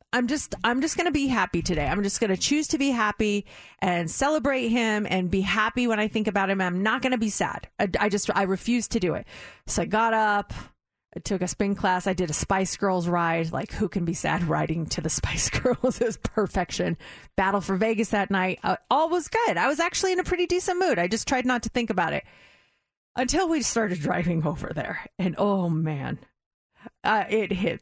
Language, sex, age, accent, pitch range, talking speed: English, female, 30-49, American, 185-250 Hz, 230 wpm